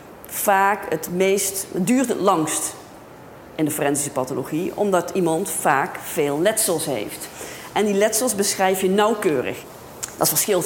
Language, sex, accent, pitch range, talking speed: Dutch, female, Dutch, 155-195 Hz, 140 wpm